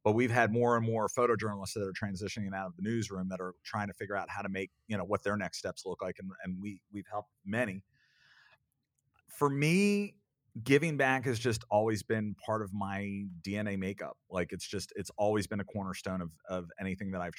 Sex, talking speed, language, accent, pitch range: male, 220 wpm, English, American, 95-105 Hz